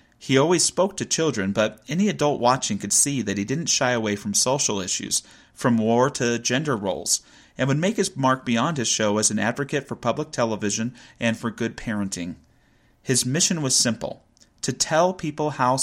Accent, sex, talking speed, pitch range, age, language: American, male, 185 wpm, 110-150 Hz, 30-49, English